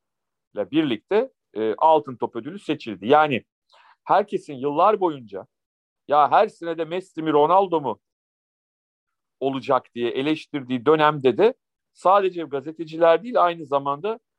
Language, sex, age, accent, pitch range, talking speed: Turkish, male, 40-59, native, 135-180 Hz, 110 wpm